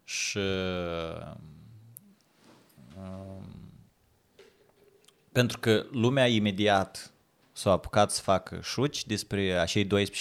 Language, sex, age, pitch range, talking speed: Russian, male, 20-39, 95-115 Hz, 80 wpm